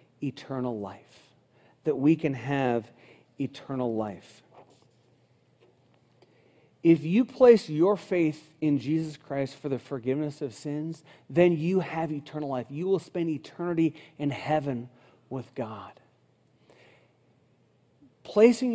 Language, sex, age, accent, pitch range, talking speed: English, male, 40-59, American, 130-165 Hz, 110 wpm